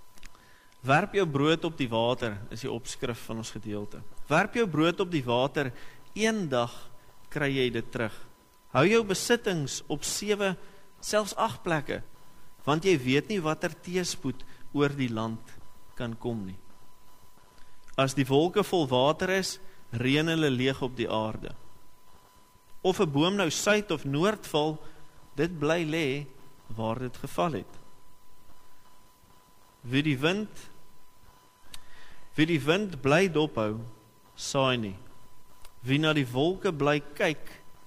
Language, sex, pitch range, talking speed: English, male, 115-165 Hz, 140 wpm